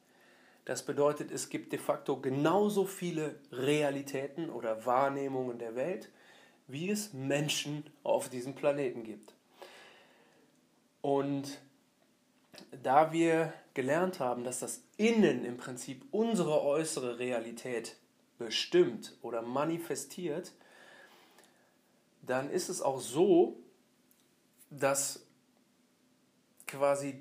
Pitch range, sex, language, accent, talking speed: 130-175 Hz, male, German, German, 95 wpm